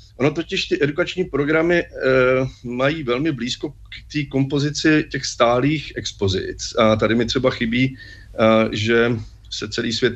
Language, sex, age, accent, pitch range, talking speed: Czech, male, 40-59, native, 110-140 Hz, 135 wpm